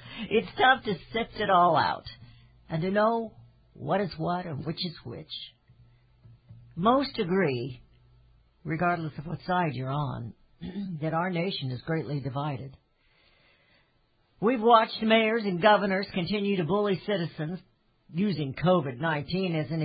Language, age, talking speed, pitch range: English, 60-79, 135 wpm, 135-200 Hz